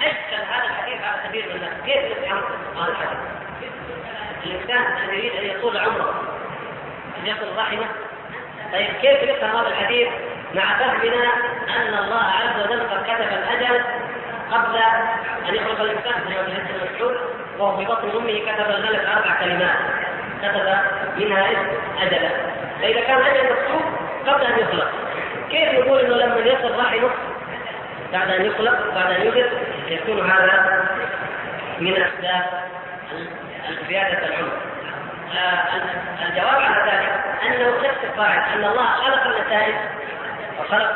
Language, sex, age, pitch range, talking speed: Arabic, female, 20-39, 195-245 Hz, 120 wpm